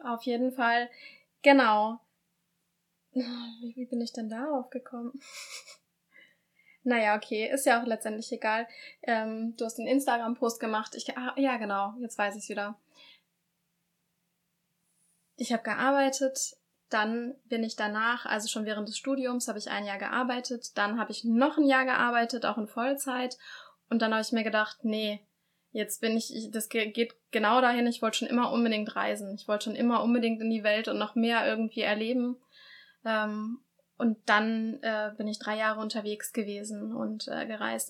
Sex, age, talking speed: female, 10-29, 160 wpm